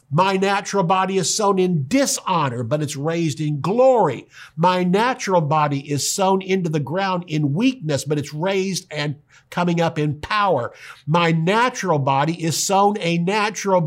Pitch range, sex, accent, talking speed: 135-190 Hz, male, American, 160 wpm